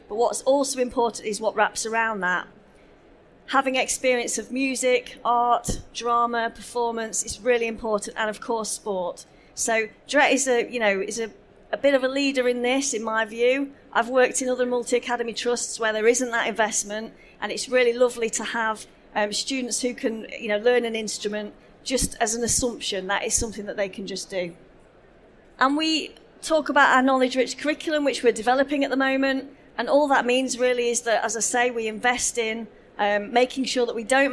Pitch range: 215-255 Hz